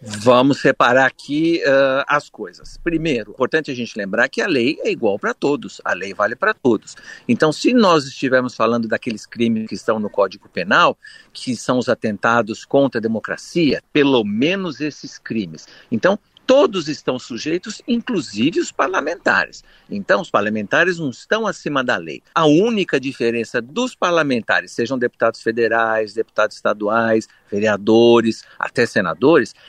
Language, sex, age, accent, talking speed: Portuguese, male, 60-79, Brazilian, 150 wpm